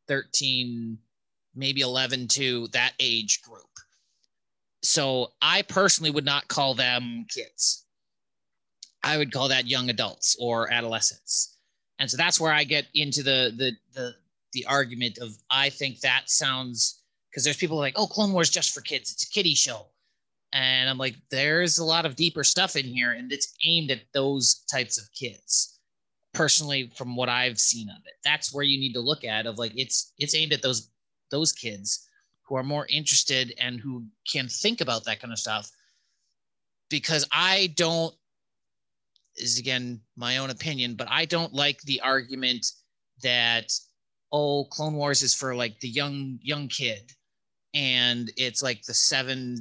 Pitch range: 120-145 Hz